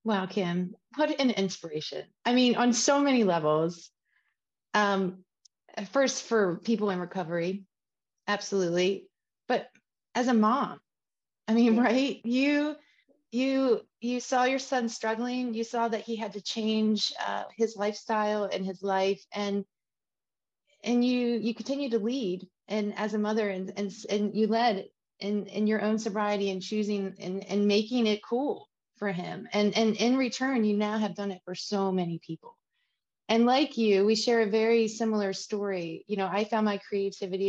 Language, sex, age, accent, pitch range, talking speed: English, female, 30-49, American, 190-230 Hz, 165 wpm